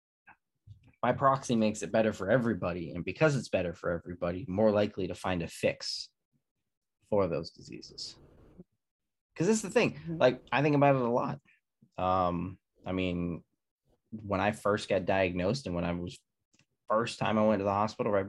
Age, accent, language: 20-39, American, English